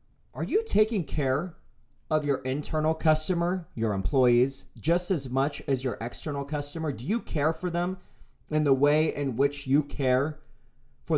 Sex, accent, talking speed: male, American, 160 wpm